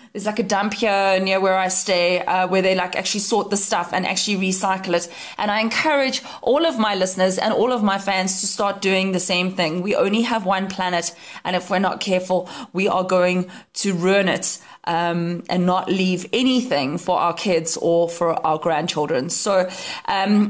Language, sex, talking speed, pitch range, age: English, female, 200 wpm, 180-215 Hz, 20-39